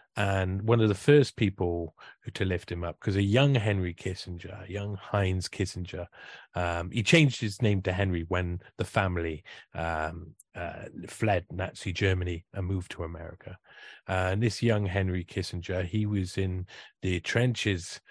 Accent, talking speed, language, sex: British, 160 wpm, English, male